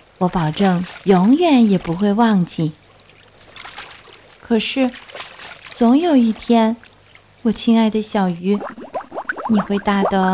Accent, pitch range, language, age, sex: native, 195-260 Hz, Chinese, 20-39, female